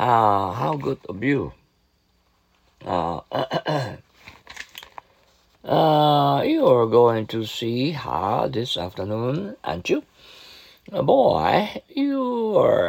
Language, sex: Japanese, male